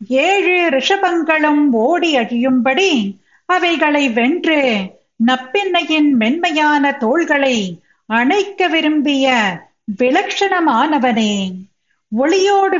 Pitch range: 240-335 Hz